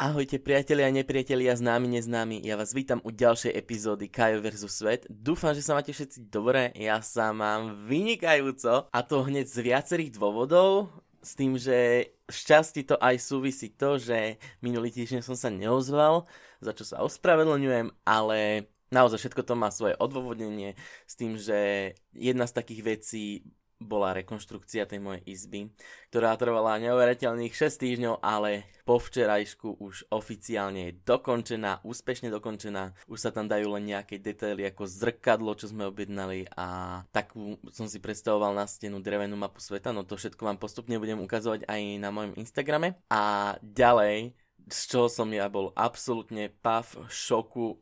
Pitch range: 105-125 Hz